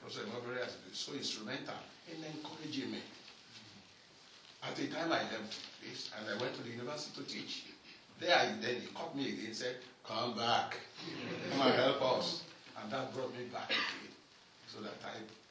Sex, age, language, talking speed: male, 60-79, English, 185 wpm